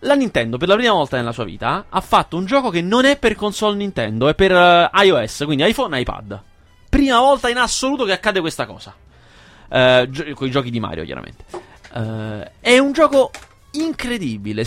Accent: native